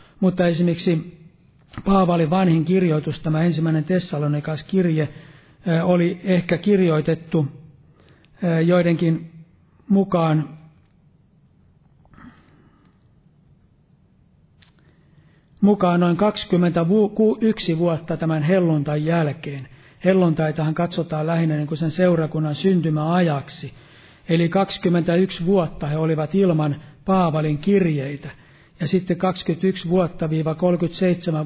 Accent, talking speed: native, 80 wpm